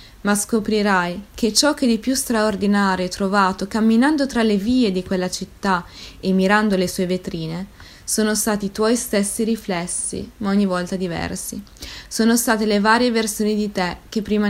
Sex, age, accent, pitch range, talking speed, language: female, 20-39, native, 185-220 Hz, 170 wpm, Italian